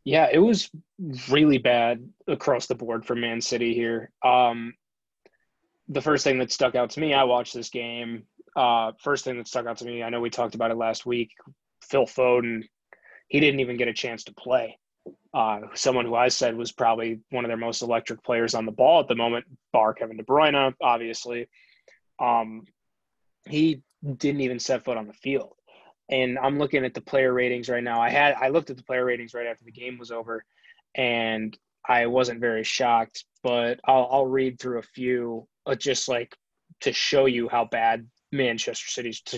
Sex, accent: male, American